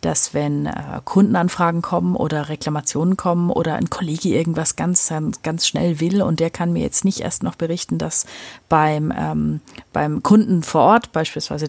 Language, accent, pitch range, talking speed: German, German, 145-185 Hz, 170 wpm